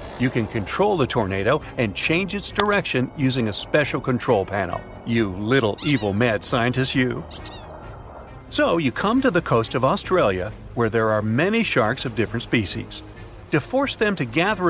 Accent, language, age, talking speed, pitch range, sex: American, English, 50-69, 165 wpm, 110-160 Hz, male